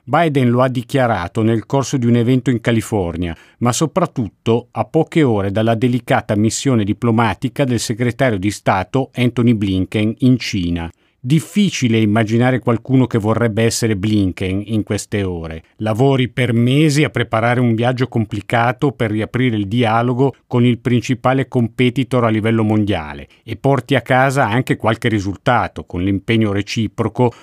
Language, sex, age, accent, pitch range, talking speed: Italian, male, 50-69, native, 105-130 Hz, 145 wpm